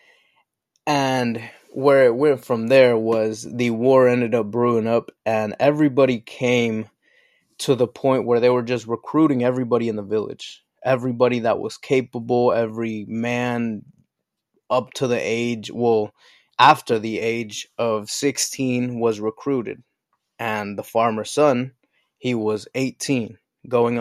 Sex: male